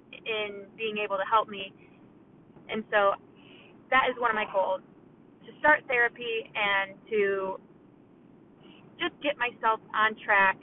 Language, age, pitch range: English, 20-39, 210-265 Hz